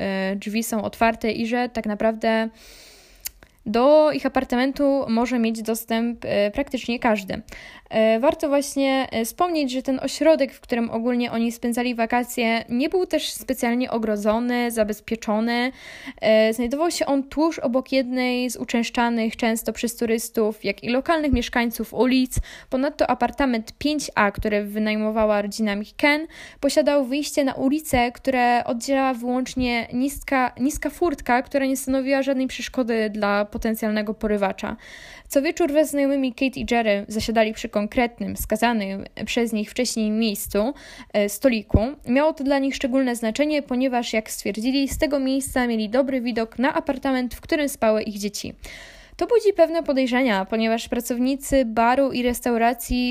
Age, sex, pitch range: 10-29, female, 225-270 Hz